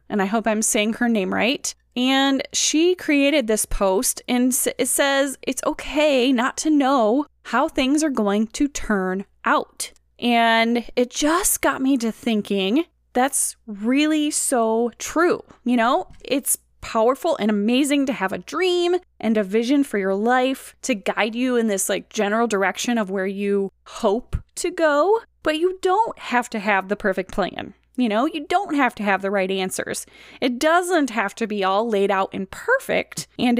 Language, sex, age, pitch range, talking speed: English, female, 20-39, 215-300 Hz, 175 wpm